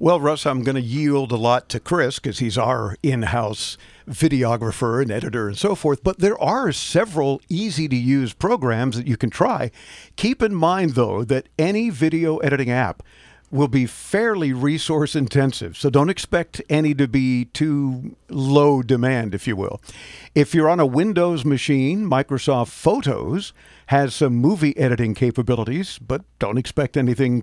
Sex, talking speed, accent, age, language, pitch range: male, 160 wpm, American, 50-69, English, 125-155 Hz